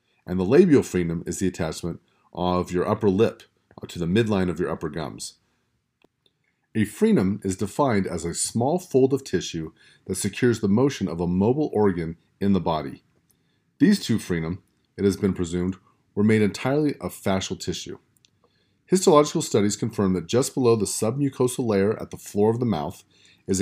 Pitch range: 90-130 Hz